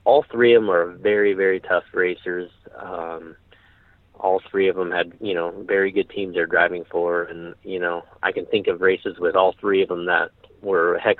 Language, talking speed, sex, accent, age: English, 215 wpm, male, American, 30-49